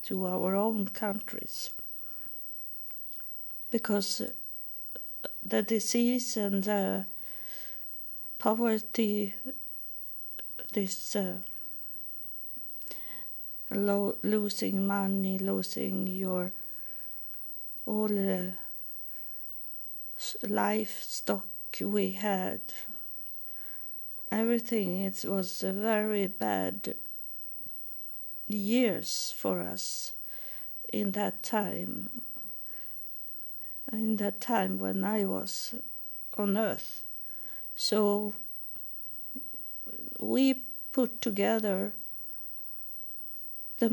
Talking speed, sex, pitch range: 60 wpm, female, 180-220 Hz